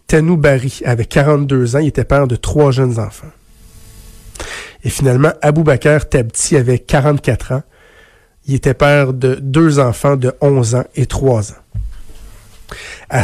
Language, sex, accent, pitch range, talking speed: French, male, Canadian, 115-145 Hz, 150 wpm